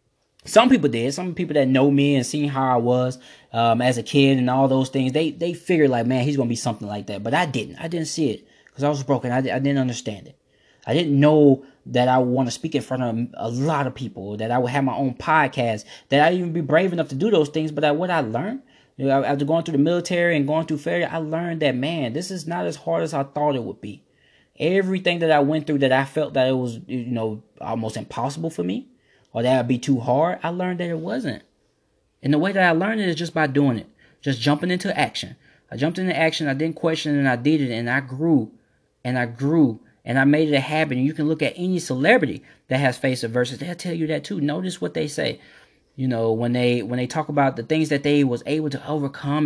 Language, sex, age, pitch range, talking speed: English, male, 20-39, 125-160 Hz, 265 wpm